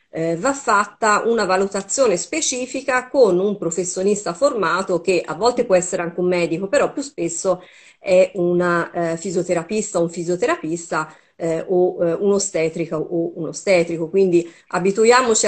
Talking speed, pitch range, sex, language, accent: 140 wpm, 175-205 Hz, female, Italian, native